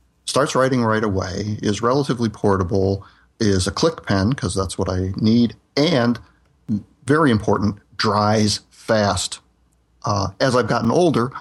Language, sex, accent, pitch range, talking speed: English, male, American, 95-110 Hz, 135 wpm